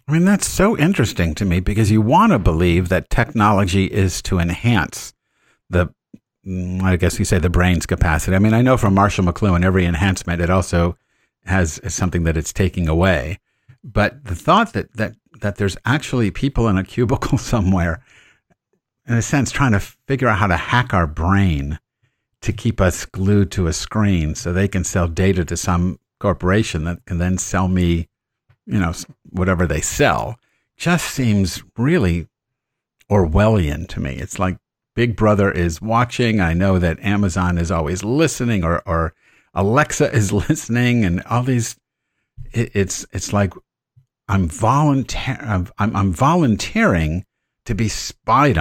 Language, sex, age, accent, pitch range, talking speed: English, male, 50-69, American, 90-115 Hz, 165 wpm